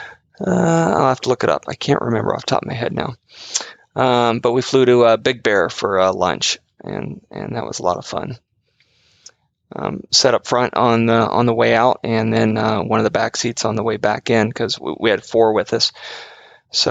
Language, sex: English, male